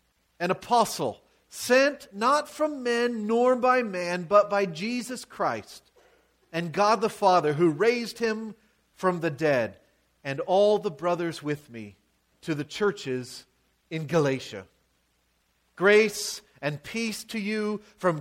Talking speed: 130 wpm